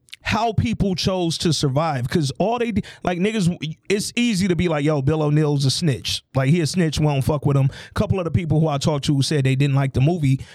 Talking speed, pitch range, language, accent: 250 wpm, 140-200 Hz, English, American